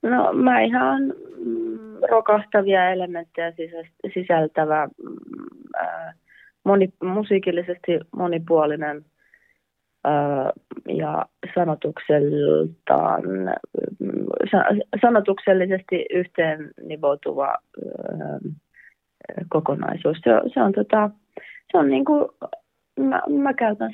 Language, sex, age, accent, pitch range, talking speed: Finnish, female, 30-49, native, 165-210 Hz, 75 wpm